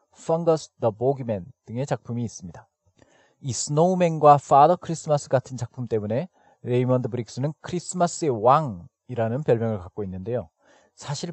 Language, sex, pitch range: Korean, male, 115-150 Hz